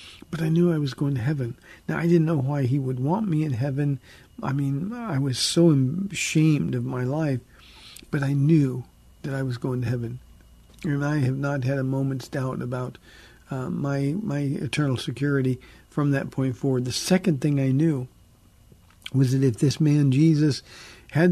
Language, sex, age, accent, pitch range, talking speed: English, male, 50-69, American, 130-155 Hz, 190 wpm